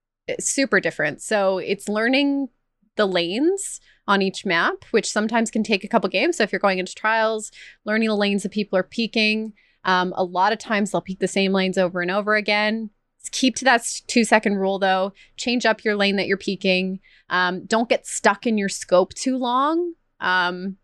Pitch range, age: 185-220 Hz, 20-39